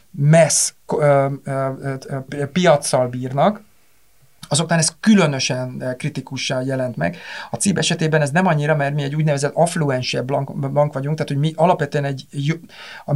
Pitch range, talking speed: 140-160 Hz, 130 wpm